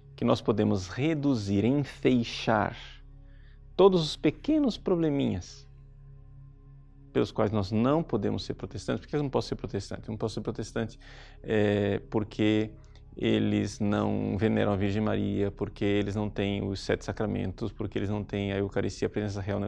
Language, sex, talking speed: Portuguese, male, 160 wpm